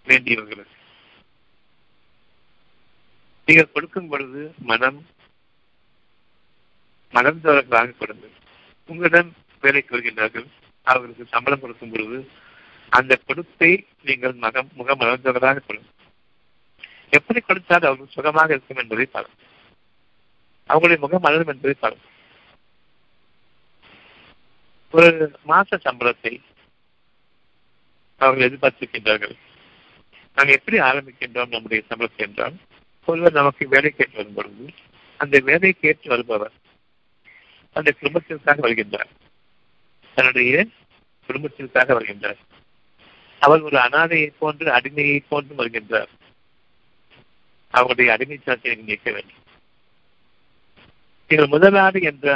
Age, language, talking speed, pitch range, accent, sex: 50-69, Tamil, 80 wpm, 120-155 Hz, native, male